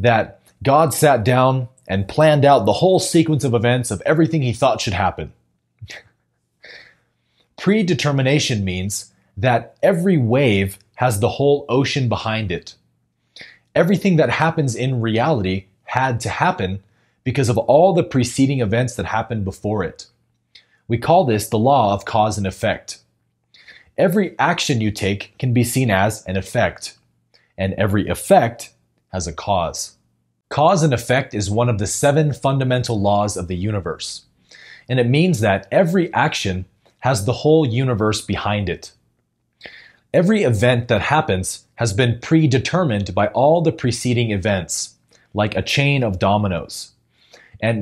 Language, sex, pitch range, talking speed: English, male, 100-135 Hz, 145 wpm